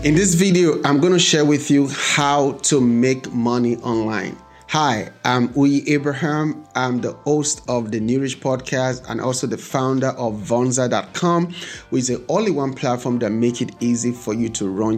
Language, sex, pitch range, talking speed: English, male, 115-145 Hz, 180 wpm